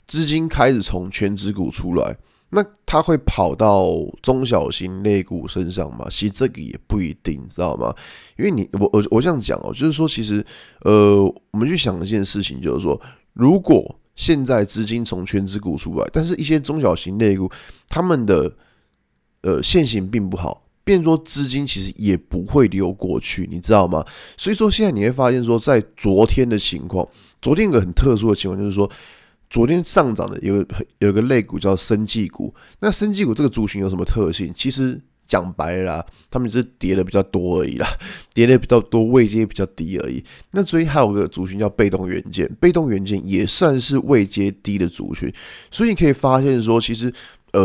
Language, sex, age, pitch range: Chinese, male, 20-39, 95-135 Hz